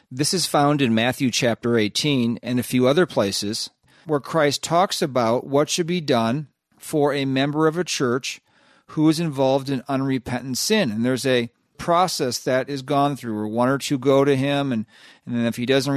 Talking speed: 200 wpm